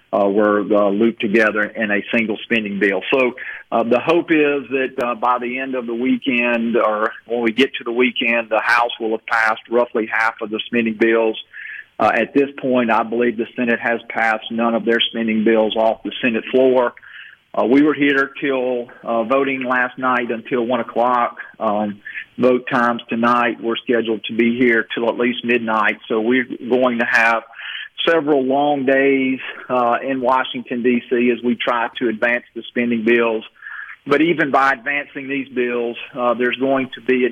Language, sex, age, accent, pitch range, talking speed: English, male, 50-69, American, 115-130 Hz, 190 wpm